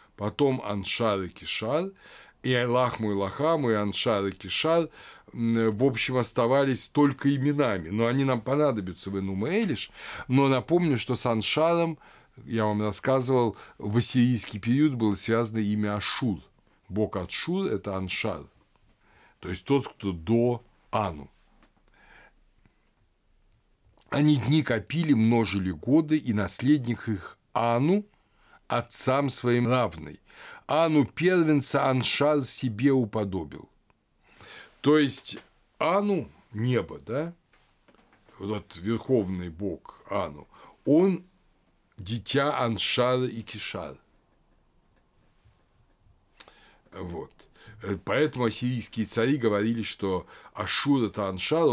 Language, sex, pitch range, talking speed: Russian, male, 105-135 Hz, 100 wpm